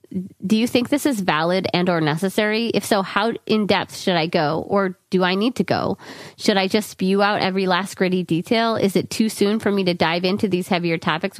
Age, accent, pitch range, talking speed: 30-49, American, 175-215 Hz, 225 wpm